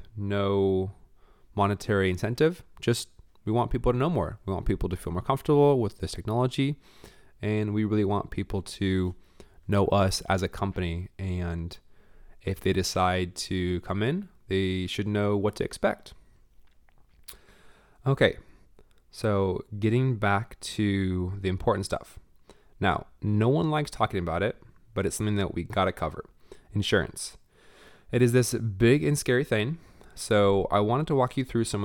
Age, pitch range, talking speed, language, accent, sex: 20-39, 90-110 Hz, 155 wpm, English, American, male